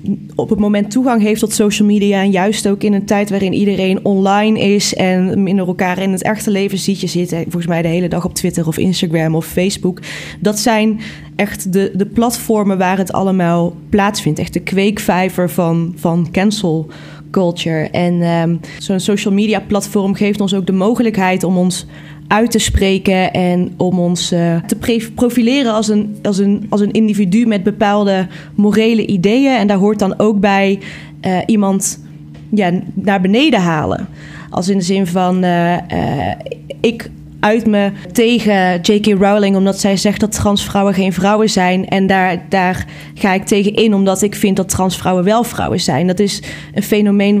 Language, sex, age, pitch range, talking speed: Dutch, female, 20-39, 180-210 Hz, 170 wpm